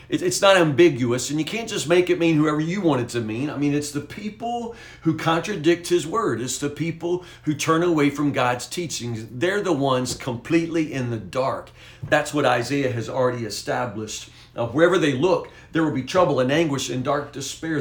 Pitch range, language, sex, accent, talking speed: 125-160 Hz, English, male, American, 200 wpm